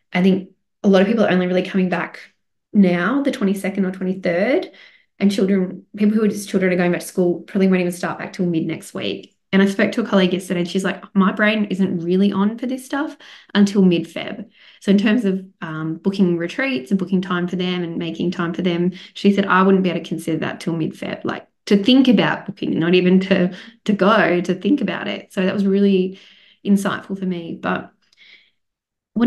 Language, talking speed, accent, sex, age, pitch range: English, 220 wpm, Australian, female, 20-39, 180-205 Hz